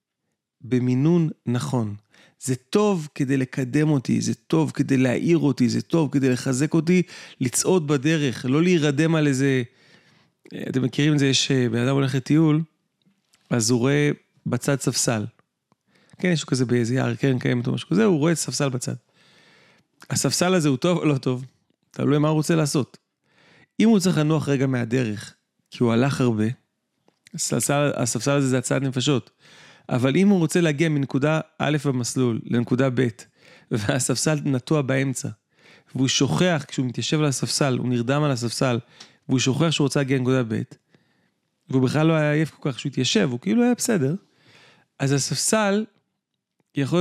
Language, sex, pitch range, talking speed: Hebrew, male, 130-155 Hz, 165 wpm